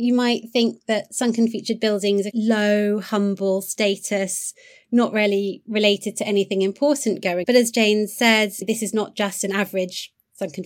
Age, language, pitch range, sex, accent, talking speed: 30-49, English, 190-235 Hz, female, British, 165 wpm